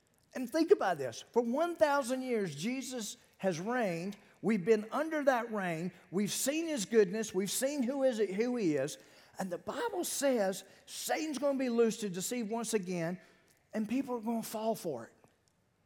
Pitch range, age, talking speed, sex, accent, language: 135-225 Hz, 50-69, 180 wpm, male, American, English